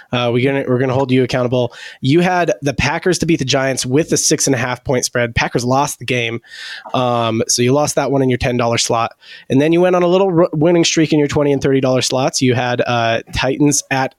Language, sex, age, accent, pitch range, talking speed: English, male, 20-39, American, 125-145 Hz, 255 wpm